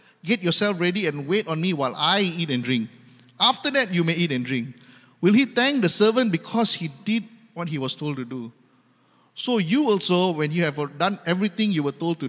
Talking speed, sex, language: 220 wpm, male, English